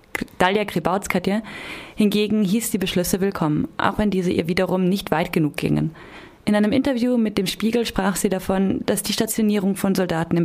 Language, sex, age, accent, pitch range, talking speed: German, female, 30-49, German, 175-210 Hz, 180 wpm